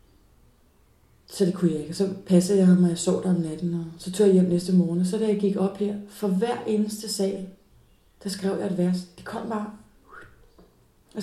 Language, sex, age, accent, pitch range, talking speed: Danish, female, 30-49, native, 175-210 Hz, 220 wpm